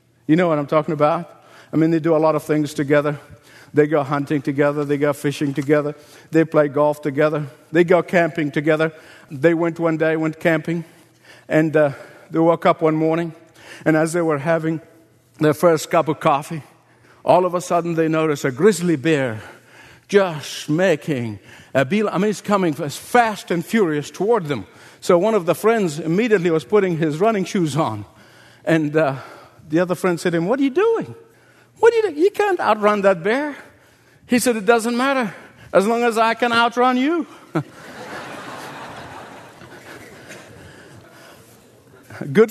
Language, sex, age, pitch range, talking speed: English, male, 50-69, 155-245 Hz, 175 wpm